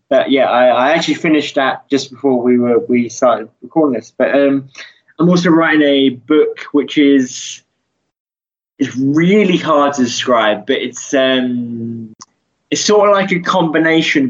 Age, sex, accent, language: 20-39, male, British, English